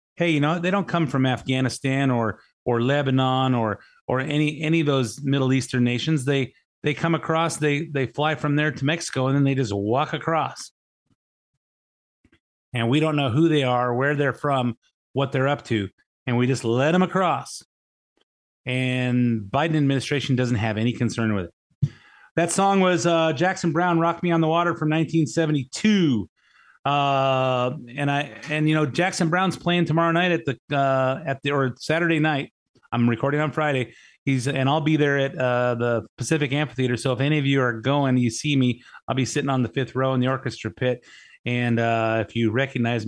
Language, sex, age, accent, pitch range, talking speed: English, male, 30-49, American, 125-155 Hz, 195 wpm